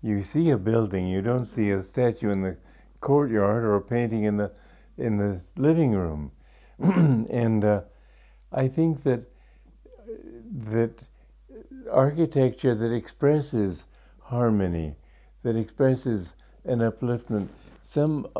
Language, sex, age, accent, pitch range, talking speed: English, male, 60-79, American, 95-135 Hz, 115 wpm